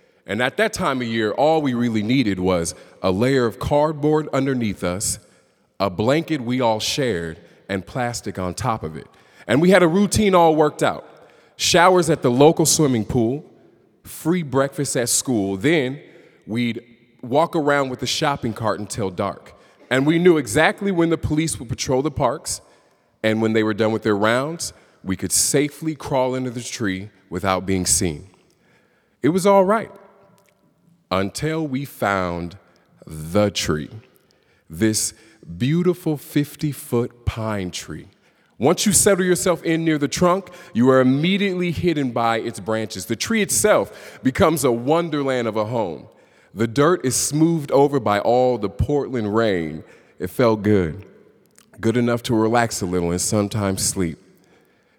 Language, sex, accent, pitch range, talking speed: English, male, American, 105-155 Hz, 160 wpm